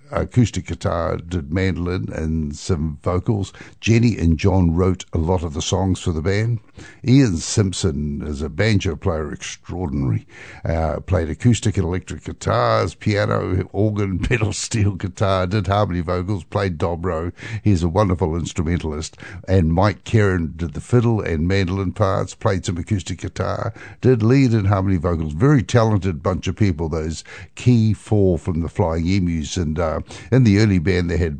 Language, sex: English, male